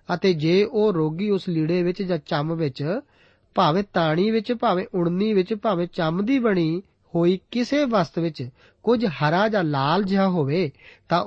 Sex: male